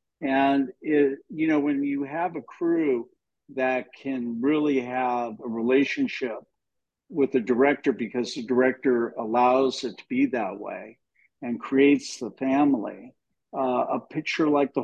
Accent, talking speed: American, 145 wpm